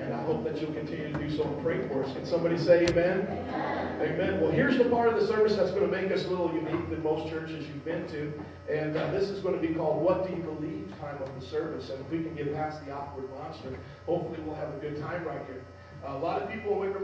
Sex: male